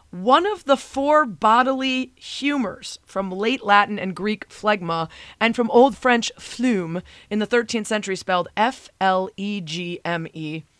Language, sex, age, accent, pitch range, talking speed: English, female, 30-49, American, 170-210 Hz, 130 wpm